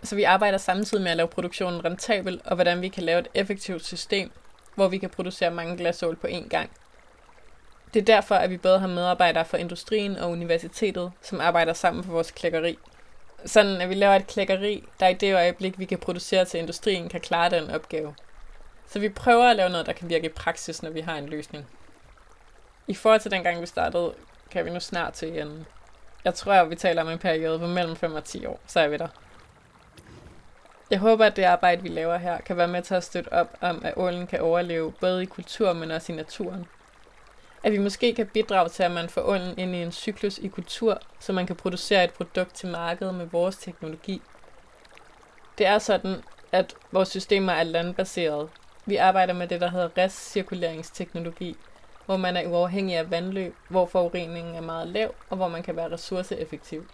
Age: 20-39